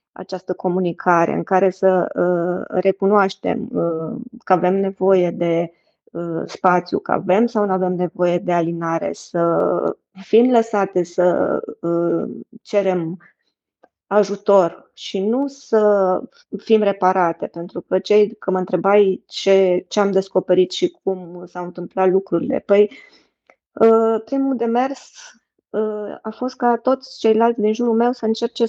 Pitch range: 180-220 Hz